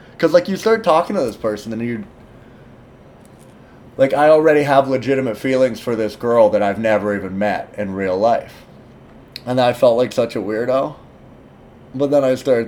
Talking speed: 180 wpm